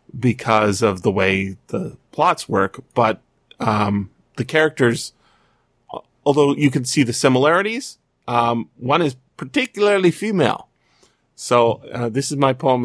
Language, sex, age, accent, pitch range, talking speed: English, male, 30-49, American, 120-160 Hz, 130 wpm